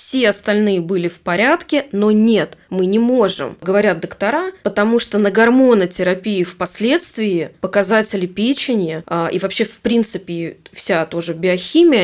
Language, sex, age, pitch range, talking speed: Russian, female, 20-39, 190-230 Hz, 130 wpm